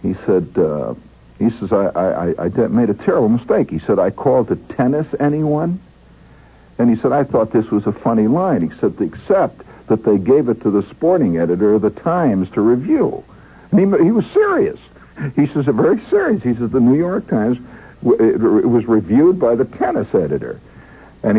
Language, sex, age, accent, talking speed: English, male, 60-79, American, 190 wpm